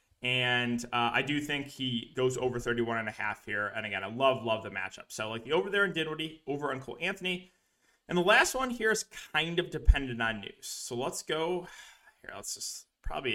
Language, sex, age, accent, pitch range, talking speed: English, male, 20-39, American, 120-165 Hz, 215 wpm